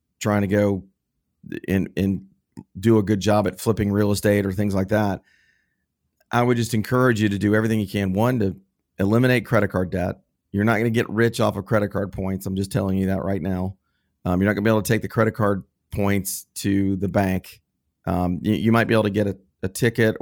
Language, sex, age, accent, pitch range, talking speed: English, male, 40-59, American, 95-110 Hz, 230 wpm